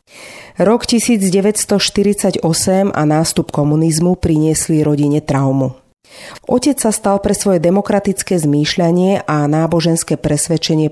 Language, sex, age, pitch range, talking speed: Slovak, female, 40-59, 150-200 Hz, 100 wpm